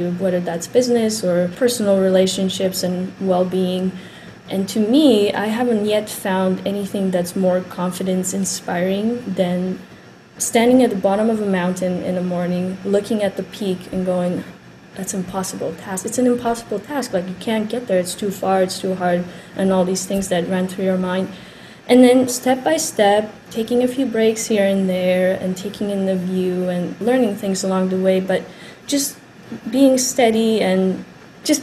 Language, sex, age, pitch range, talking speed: English, female, 20-39, 185-220 Hz, 175 wpm